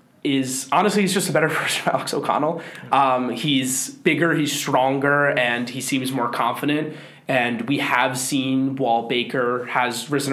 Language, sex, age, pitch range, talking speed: English, male, 20-39, 125-150 Hz, 165 wpm